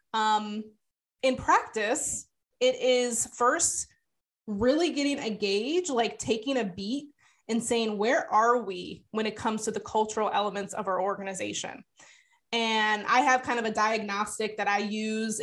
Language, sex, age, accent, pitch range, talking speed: English, female, 20-39, American, 210-250 Hz, 150 wpm